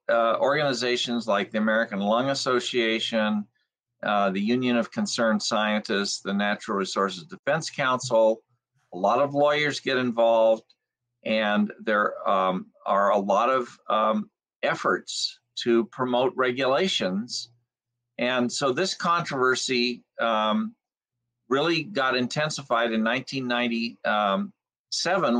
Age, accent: 50-69, American